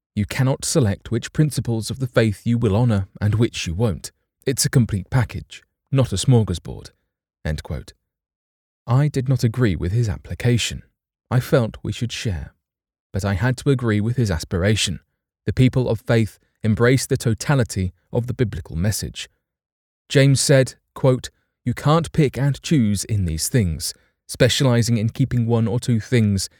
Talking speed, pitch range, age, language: 165 wpm, 95-130 Hz, 30-49, English